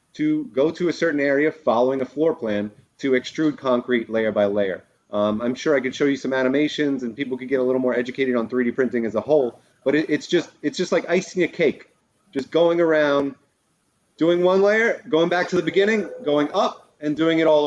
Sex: male